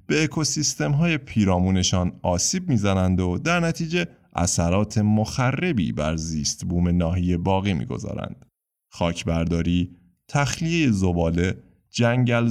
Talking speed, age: 100 wpm, 30-49